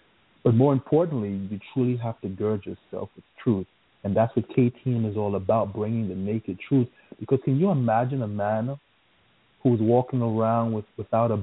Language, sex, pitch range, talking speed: English, male, 115-145 Hz, 180 wpm